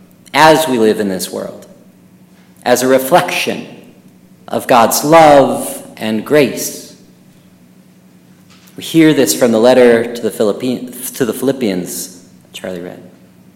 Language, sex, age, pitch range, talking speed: English, male, 40-59, 125-175 Hz, 115 wpm